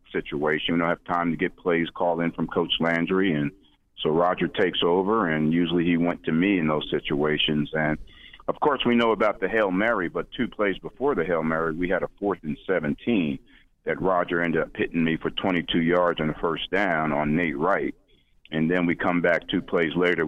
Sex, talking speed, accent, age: male, 215 wpm, American, 50-69